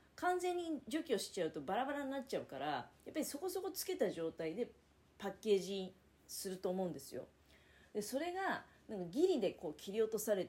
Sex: female